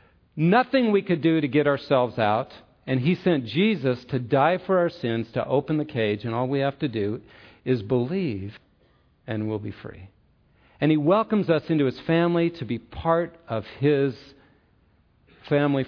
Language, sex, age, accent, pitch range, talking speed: English, male, 50-69, American, 115-165 Hz, 175 wpm